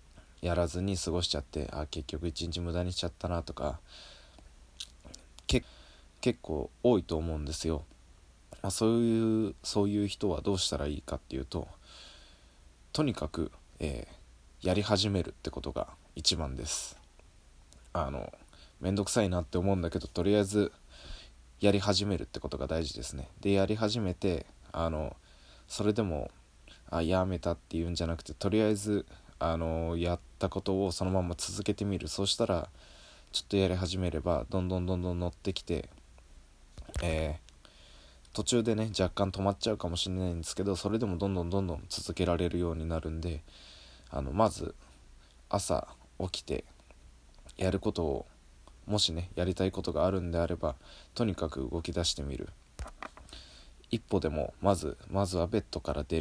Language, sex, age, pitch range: Japanese, male, 20-39, 75-95 Hz